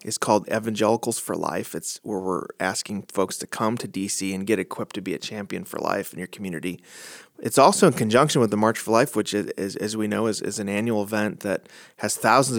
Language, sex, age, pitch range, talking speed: English, male, 30-49, 105-120 Hz, 235 wpm